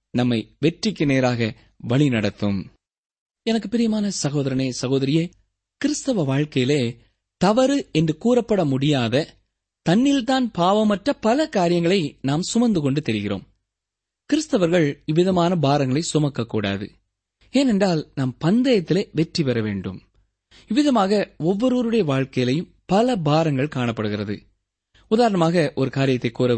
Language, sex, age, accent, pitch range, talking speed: Tamil, male, 20-39, native, 120-205 Hz, 95 wpm